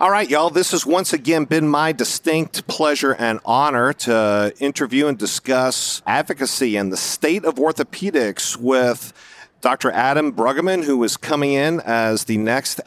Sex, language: male, English